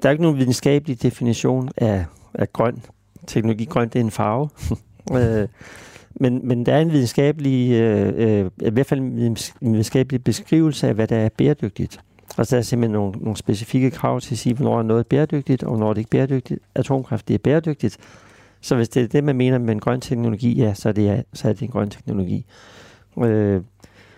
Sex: male